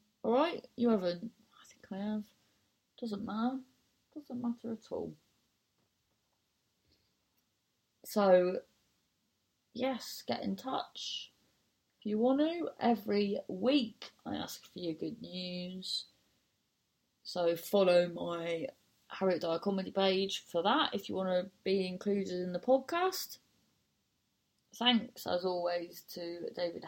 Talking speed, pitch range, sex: 120 wpm, 170-245 Hz, female